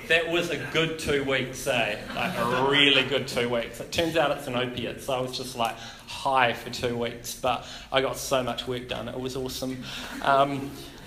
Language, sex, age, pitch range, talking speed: English, male, 30-49, 130-155 Hz, 210 wpm